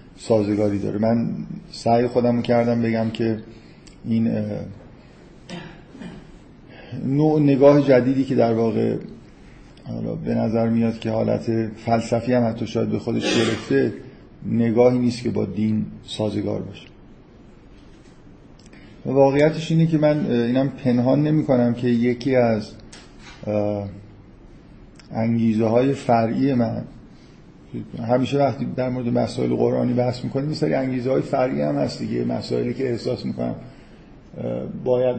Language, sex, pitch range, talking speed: Persian, male, 115-125 Hz, 120 wpm